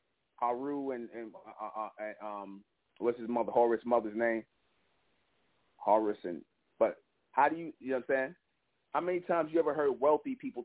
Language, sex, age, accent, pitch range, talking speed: English, male, 30-49, American, 120-160 Hz, 170 wpm